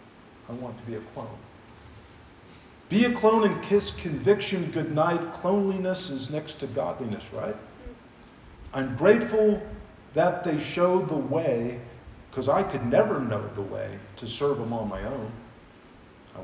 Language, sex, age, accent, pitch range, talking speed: English, male, 50-69, American, 110-165 Hz, 145 wpm